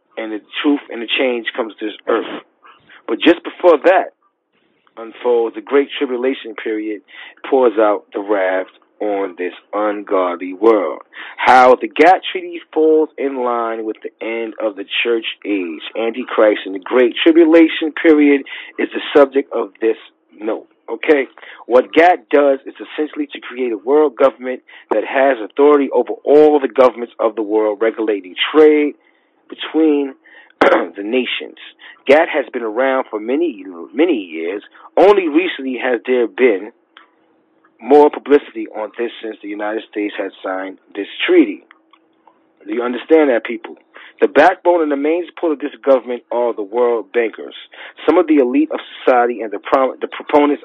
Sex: male